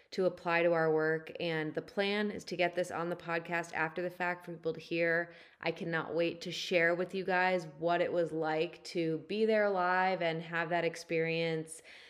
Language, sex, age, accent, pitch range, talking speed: English, female, 20-39, American, 165-195 Hz, 210 wpm